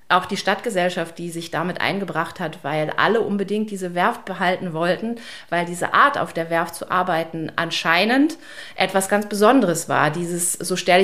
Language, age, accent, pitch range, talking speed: German, 30-49, German, 165-195 Hz, 170 wpm